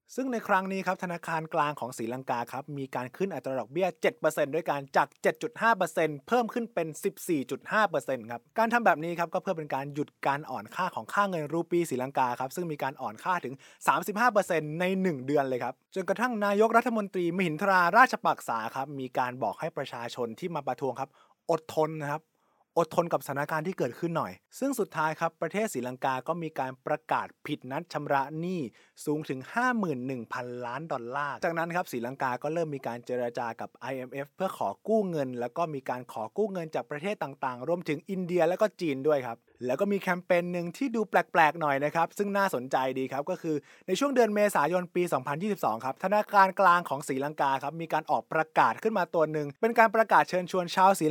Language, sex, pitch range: Thai, male, 140-195 Hz